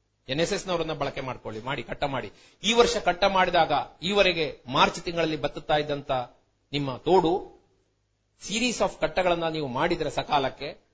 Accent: native